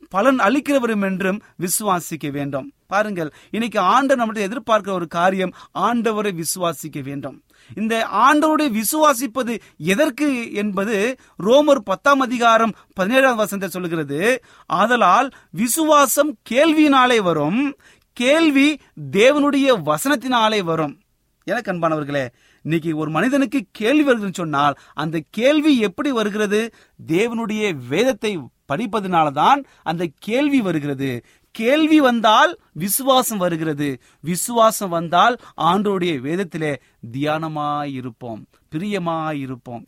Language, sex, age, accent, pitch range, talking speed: Tamil, male, 30-49, native, 150-245 Hz, 90 wpm